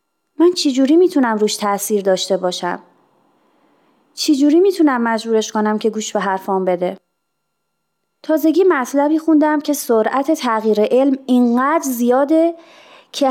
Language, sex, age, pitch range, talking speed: Persian, female, 30-49, 215-315 Hz, 115 wpm